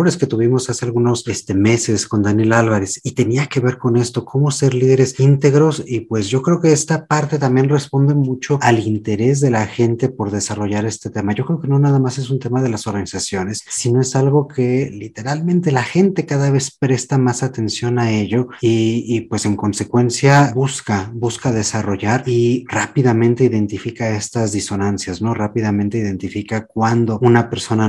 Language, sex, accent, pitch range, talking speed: Spanish, male, Mexican, 110-135 Hz, 180 wpm